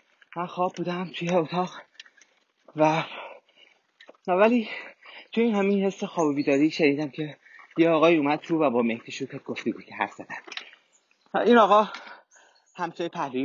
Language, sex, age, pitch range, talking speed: Persian, male, 30-49, 135-180 Hz, 145 wpm